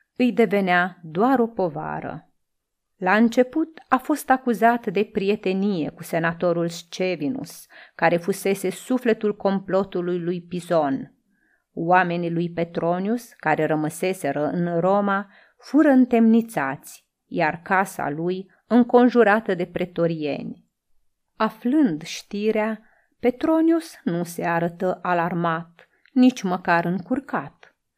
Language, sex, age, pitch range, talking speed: Romanian, female, 30-49, 175-235 Hz, 100 wpm